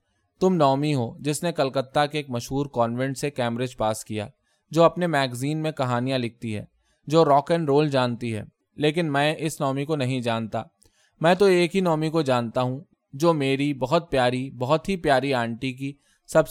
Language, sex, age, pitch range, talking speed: Urdu, male, 20-39, 125-160 Hz, 190 wpm